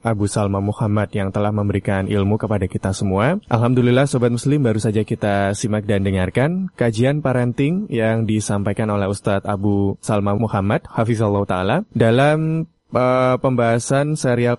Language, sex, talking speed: Indonesian, male, 145 wpm